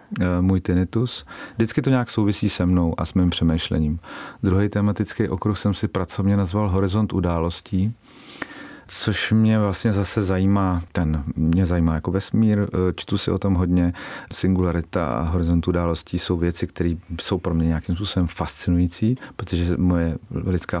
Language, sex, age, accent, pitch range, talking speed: Czech, male, 40-59, native, 85-100 Hz, 150 wpm